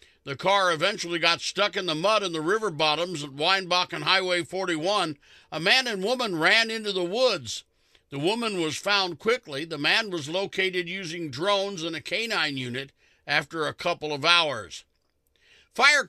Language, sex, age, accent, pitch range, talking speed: English, male, 60-79, American, 160-200 Hz, 170 wpm